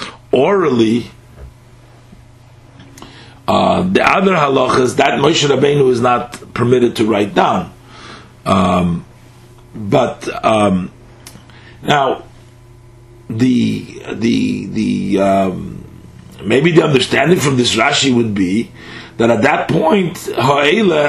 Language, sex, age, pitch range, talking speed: English, male, 40-59, 115-135 Hz, 100 wpm